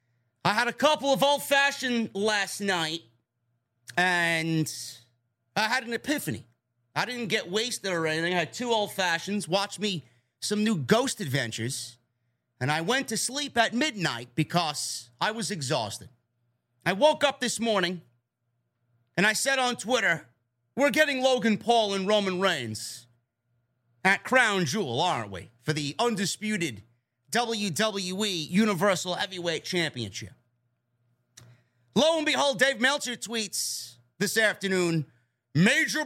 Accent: American